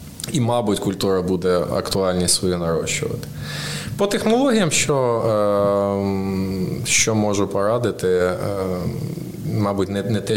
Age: 20-39